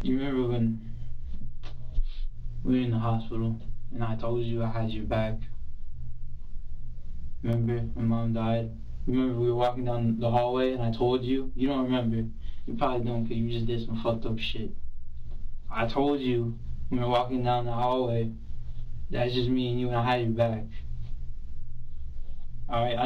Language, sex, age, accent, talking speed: English, male, 20-39, American, 175 wpm